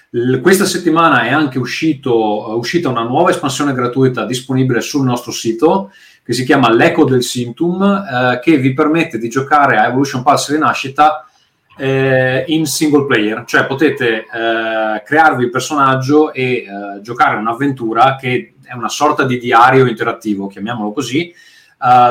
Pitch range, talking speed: 115-140 Hz, 150 wpm